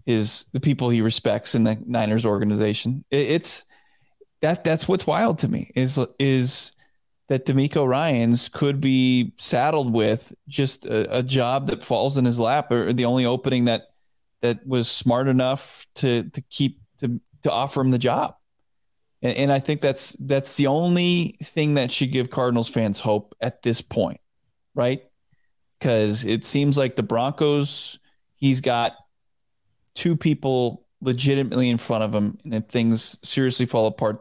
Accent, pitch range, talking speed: American, 115-135 Hz, 165 wpm